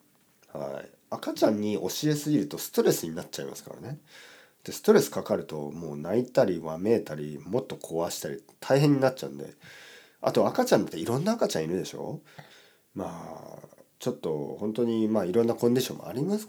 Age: 40-59